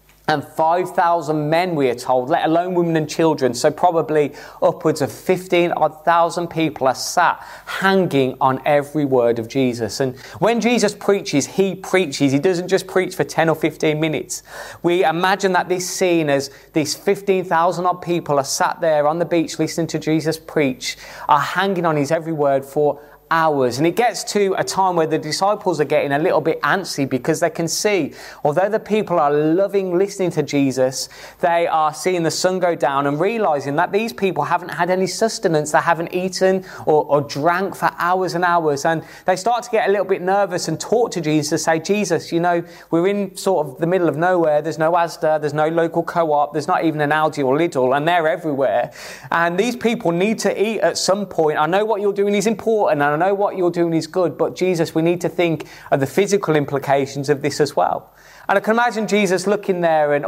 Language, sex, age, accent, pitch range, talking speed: English, male, 20-39, British, 150-190 Hz, 210 wpm